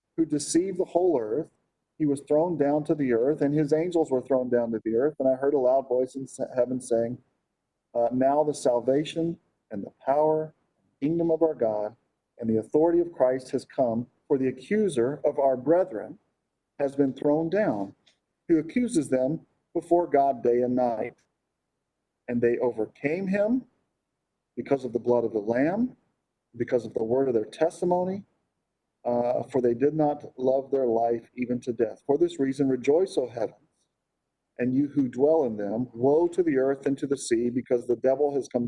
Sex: male